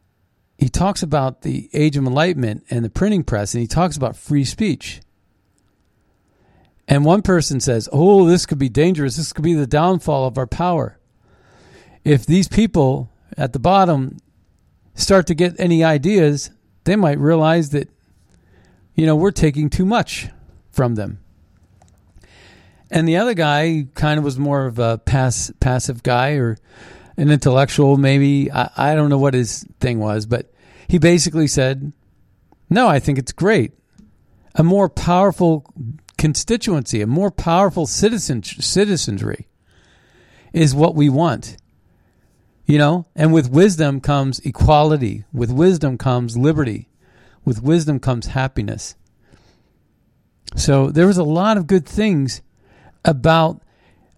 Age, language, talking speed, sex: 50-69, English, 140 wpm, male